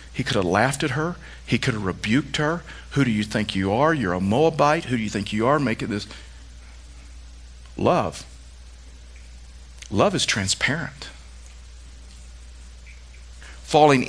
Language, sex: English, male